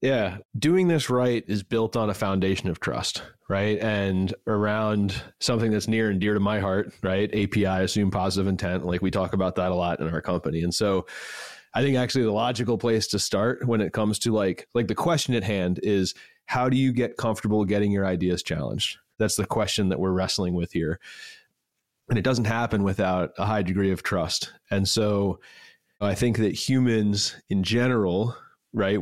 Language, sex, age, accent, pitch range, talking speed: English, male, 30-49, American, 95-115 Hz, 195 wpm